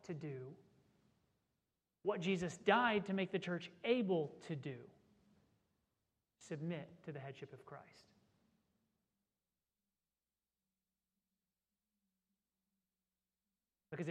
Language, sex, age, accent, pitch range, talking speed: English, male, 30-49, American, 155-195 Hz, 80 wpm